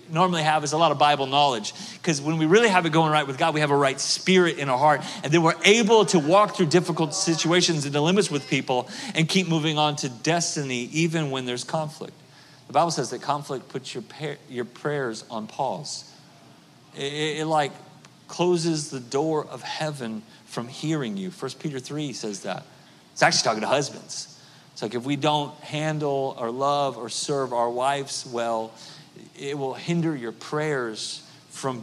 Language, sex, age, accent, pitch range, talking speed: English, male, 40-59, American, 130-160 Hz, 190 wpm